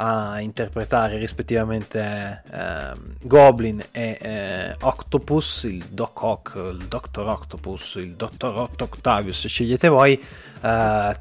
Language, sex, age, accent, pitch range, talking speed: Italian, male, 20-39, native, 105-125 Hz, 105 wpm